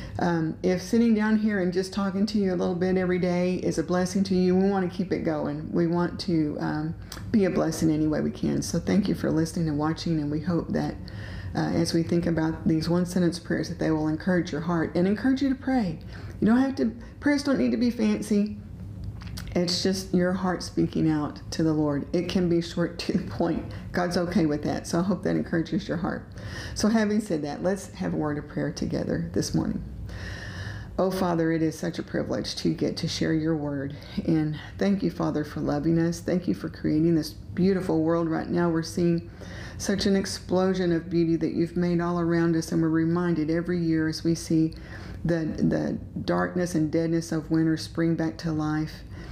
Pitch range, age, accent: 155-180 Hz, 40-59, American